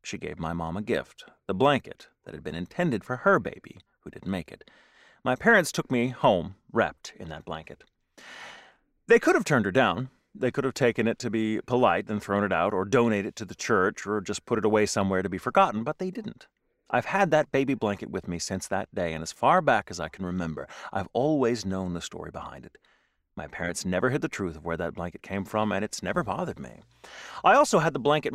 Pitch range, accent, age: 95-140 Hz, American, 30-49